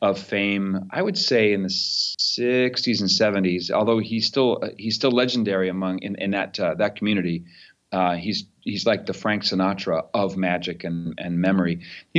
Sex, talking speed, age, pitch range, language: male, 175 wpm, 40-59, 95-115 Hz, English